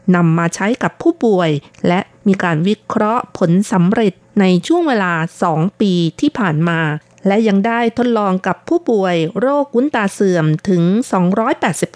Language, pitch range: Thai, 175-225 Hz